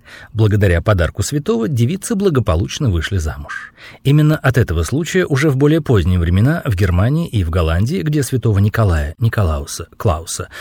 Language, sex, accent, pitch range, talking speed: Russian, male, native, 95-160 Hz, 145 wpm